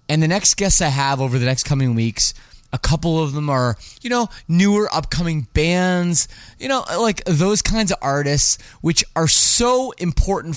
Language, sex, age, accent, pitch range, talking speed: English, male, 20-39, American, 125-180 Hz, 180 wpm